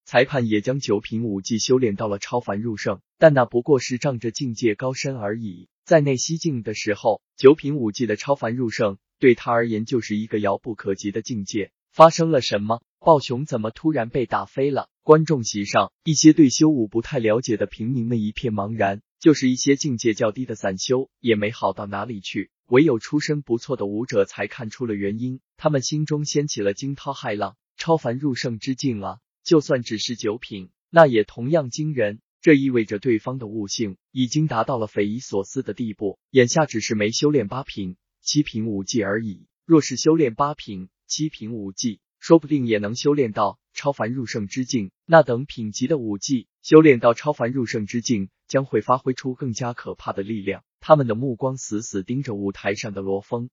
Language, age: Chinese, 20-39